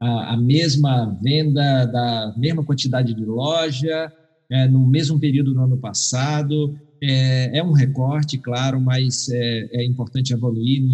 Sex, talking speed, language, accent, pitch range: male, 135 wpm, Portuguese, Brazilian, 125-145 Hz